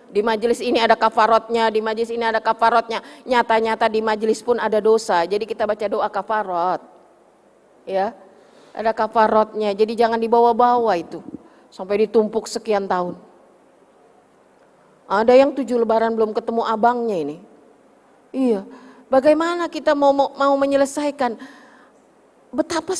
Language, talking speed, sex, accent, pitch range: Indonesian, 125 wpm, female, native, 215-260 Hz